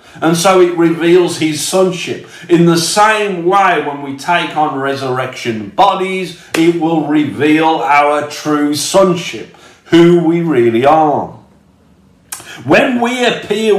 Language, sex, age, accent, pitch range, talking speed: English, male, 50-69, British, 155-205 Hz, 125 wpm